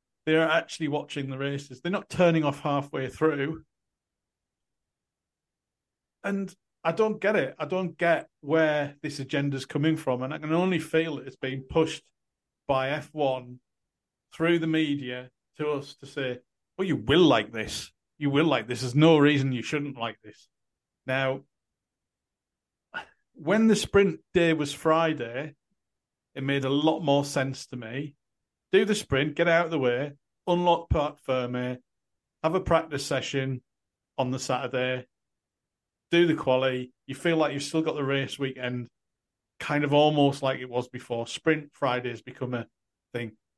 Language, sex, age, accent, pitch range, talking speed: English, male, 40-59, British, 130-160 Hz, 160 wpm